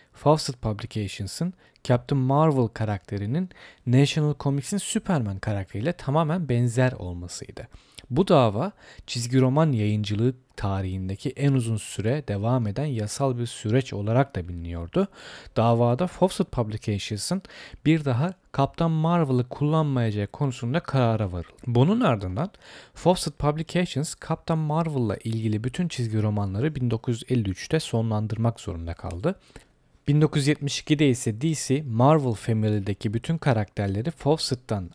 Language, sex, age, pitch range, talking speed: Turkish, male, 40-59, 110-150 Hz, 105 wpm